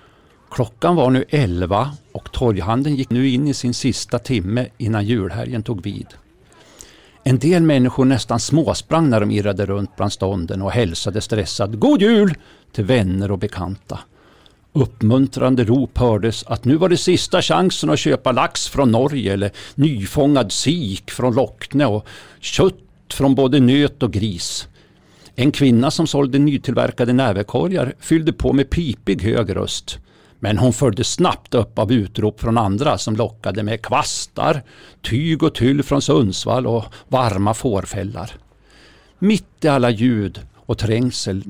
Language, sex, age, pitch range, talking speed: Swedish, male, 50-69, 105-135 Hz, 145 wpm